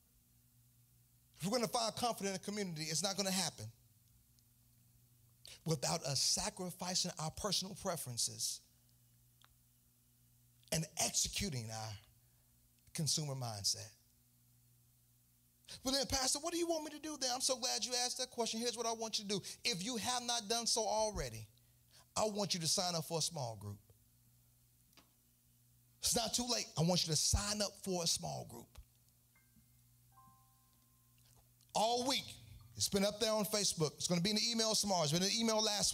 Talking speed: 170 wpm